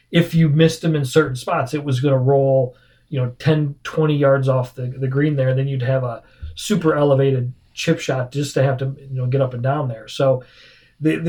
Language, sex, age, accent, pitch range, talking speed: English, male, 40-59, American, 130-150 Hz, 230 wpm